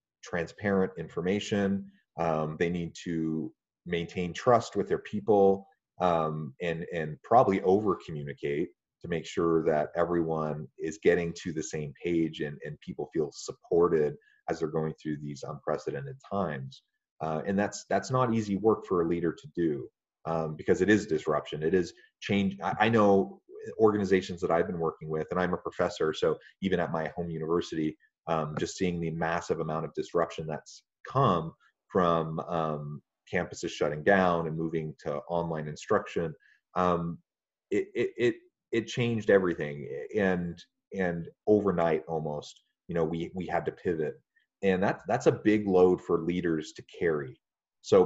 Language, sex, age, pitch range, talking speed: English, male, 30-49, 80-100 Hz, 155 wpm